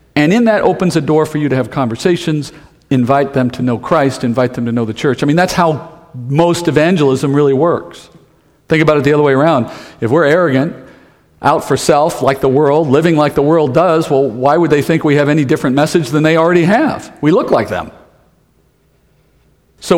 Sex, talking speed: male, 210 wpm